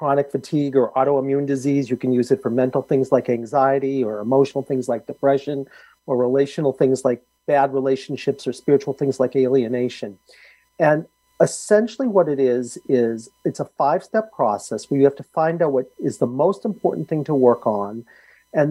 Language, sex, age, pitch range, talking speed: English, male, 40-59, 130-155 Hz, 180 wpm